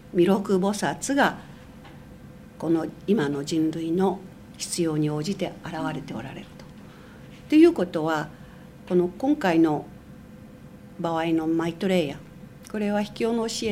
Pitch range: 170-215 Hz